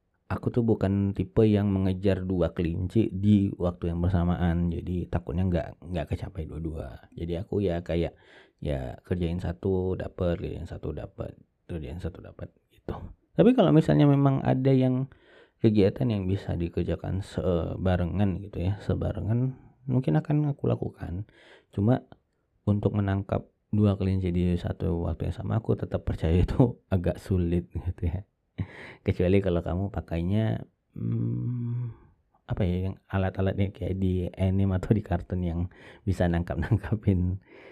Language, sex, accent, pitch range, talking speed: Indonesian, male, native, 85-110 Hz, 140 wpm